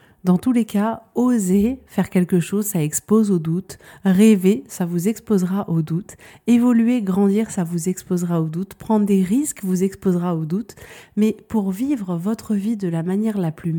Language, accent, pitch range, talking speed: French, French, 185-225 Hz, 185 wpm